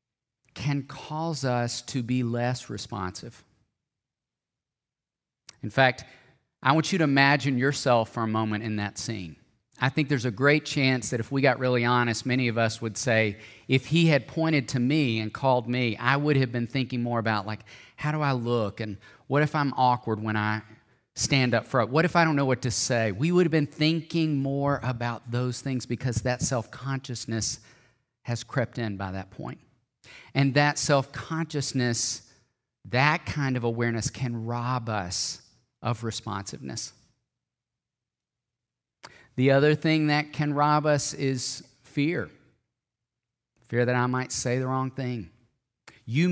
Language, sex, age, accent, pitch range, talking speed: English, male, 40-59, American, 115-140 Hz, 160 wpm